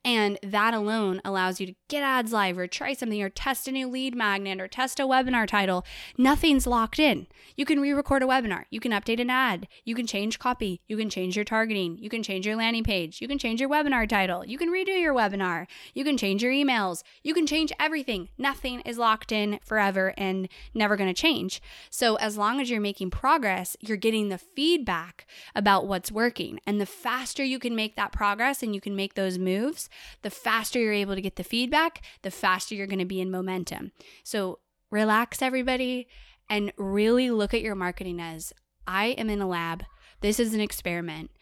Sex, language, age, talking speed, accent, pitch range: female, English, 10-29, 210 wpm, American, 190-255 Hz